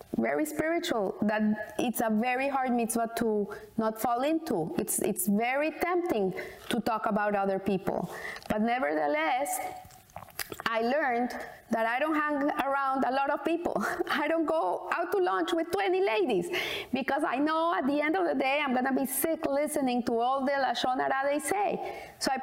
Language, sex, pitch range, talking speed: English, female, 215-300 Hz, 175 wpm